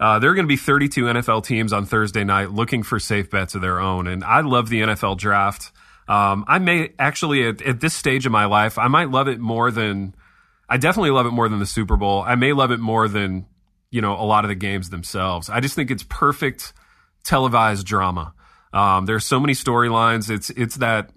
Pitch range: 95-120 Hz